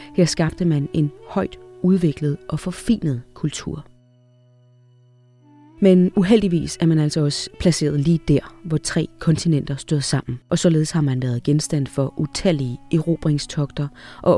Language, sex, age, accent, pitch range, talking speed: Danish, female, 30-49, native, 145-180 Hz, 140 wpm